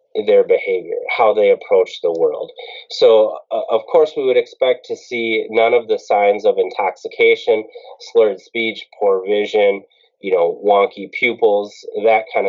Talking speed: 155 wpm